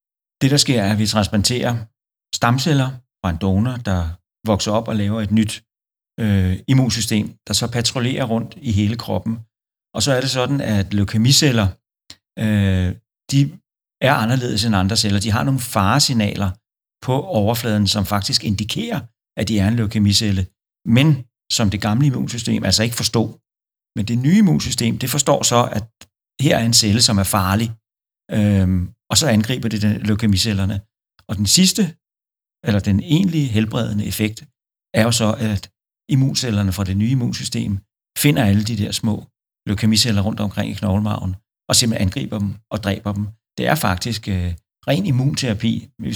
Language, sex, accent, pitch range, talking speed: Danish, male, native, 100-120 Hz, 160 wpm